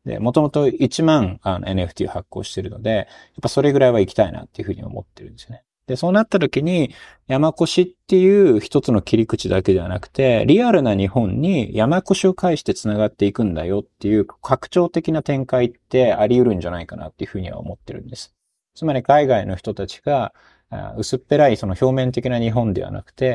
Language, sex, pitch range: Japanese, male, 100-145 Hz